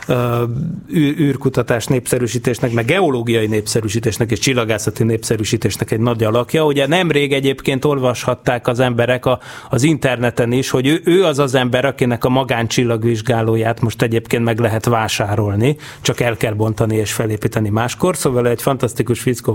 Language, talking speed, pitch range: Hungarian, 145 wpm, 115-145 Hz